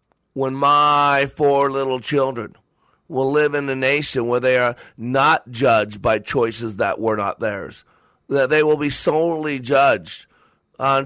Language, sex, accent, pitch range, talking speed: English, male, American, 125-150 Hz, 150 wpm